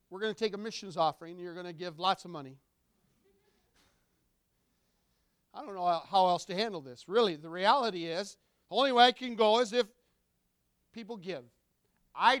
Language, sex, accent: English, male, American